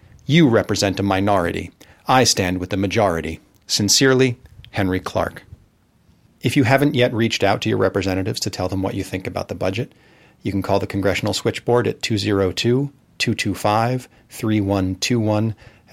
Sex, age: male, 40-59